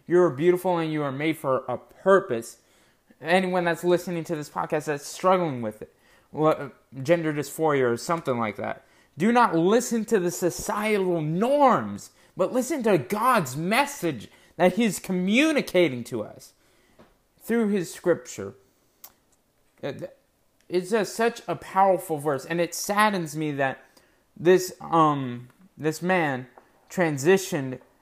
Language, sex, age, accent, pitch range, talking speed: English, male, 20-39, American, 145-185 Hz, 135 wpm